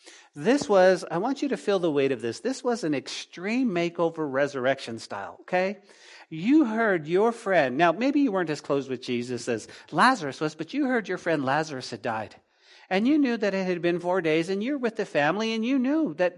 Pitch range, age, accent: 180-235 Hz, 50-69, American